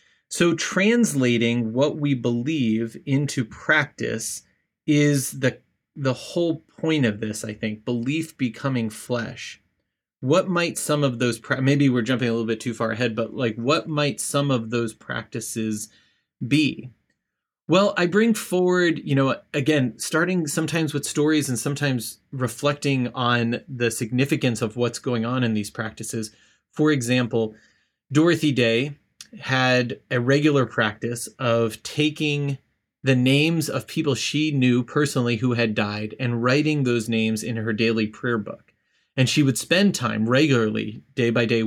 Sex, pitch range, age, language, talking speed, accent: male, 115-150 Hz, 30-49, English, 150 wpm, American